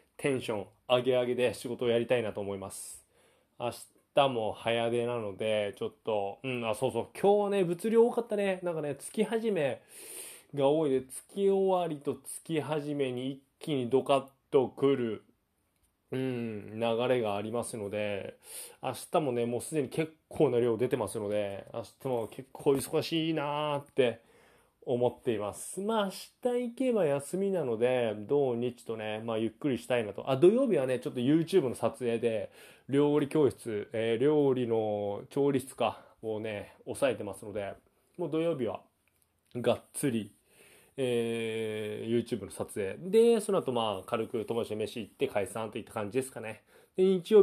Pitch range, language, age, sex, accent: 115-155 Hz, Japanese, 20-39, male, native